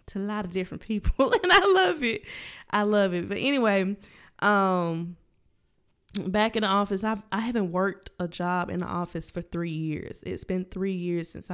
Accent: American